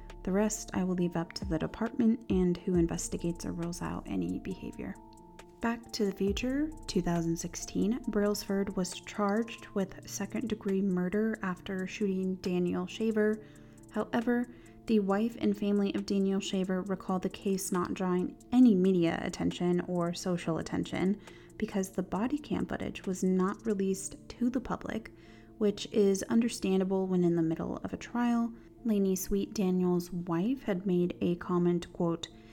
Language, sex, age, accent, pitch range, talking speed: English, female, 30-49, American, 175-205 Hz, 150 wpm